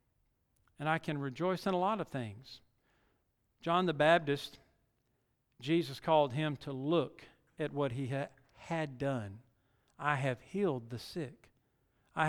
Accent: American